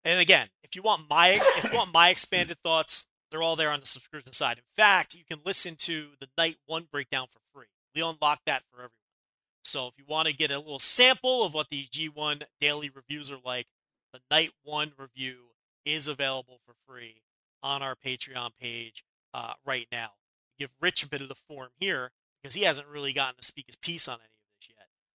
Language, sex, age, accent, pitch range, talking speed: English, male, 30-49, American, 135-170 Hz, 215 wpm